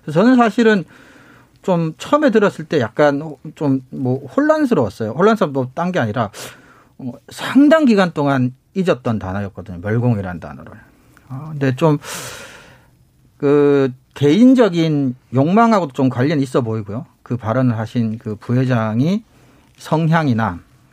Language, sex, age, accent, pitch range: Korean, male, 40-59, native, 125-190 Hz